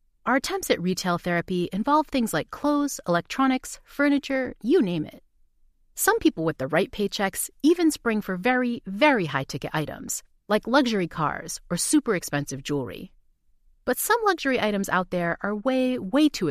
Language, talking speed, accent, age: English, 160 wpm, American, 30-49